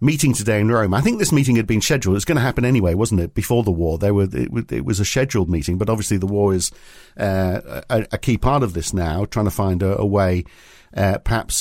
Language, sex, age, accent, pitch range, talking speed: English, male, 50-69, British, 100-120 Hz, 260 wpm